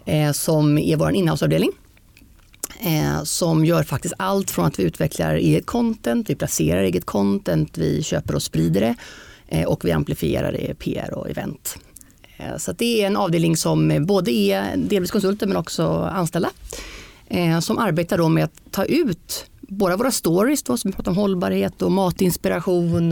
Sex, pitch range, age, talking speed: female, 150-195 Hz, 30-49, 165 wpm